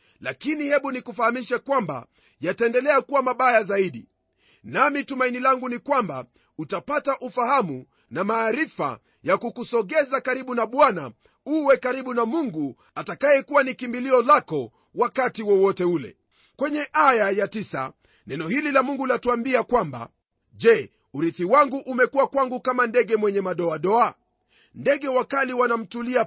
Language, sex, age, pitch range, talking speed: Swahili, male, 40-59, 205-275 Hz, 125 wpm